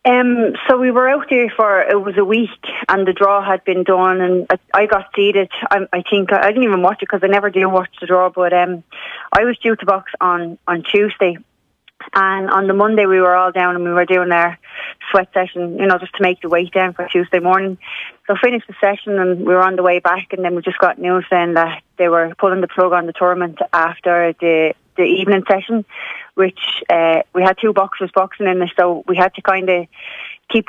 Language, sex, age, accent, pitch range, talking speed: English, female, 30-49, Irish, 180-200 Hz, 240 wpm